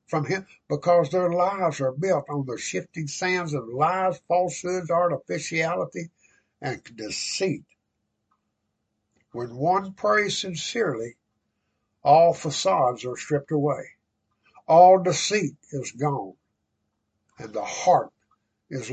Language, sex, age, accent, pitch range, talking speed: English, male, 60-79, American, 135-185 Hz, 110 wpm